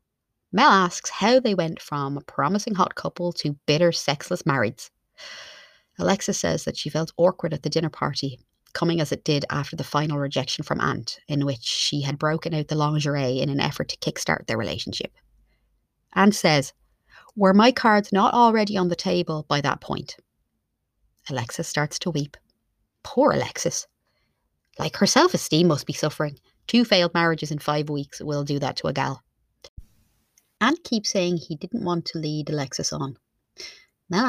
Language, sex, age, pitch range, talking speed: English, female, 30-49, 145-190 Hz, 170 wpm